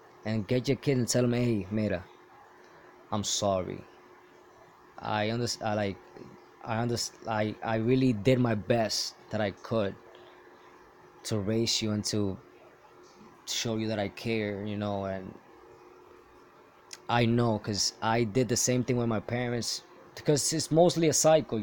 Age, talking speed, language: 20-39, 155 wpm, English